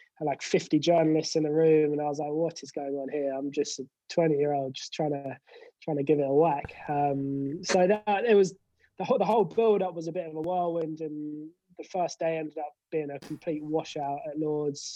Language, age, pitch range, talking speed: English, 20-39, 140-165 Hz, 235 wpm